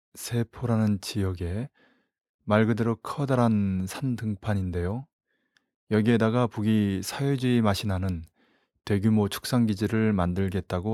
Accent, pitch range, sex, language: native, 100-120 Hz, male, Korean